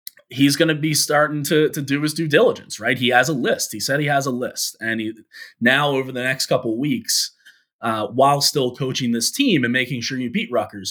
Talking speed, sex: 235 wpm, male